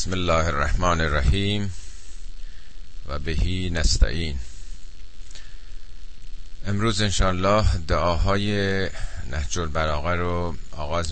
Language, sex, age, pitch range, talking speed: Persian, male, 50-69, 80-90 Hz, 80 wpm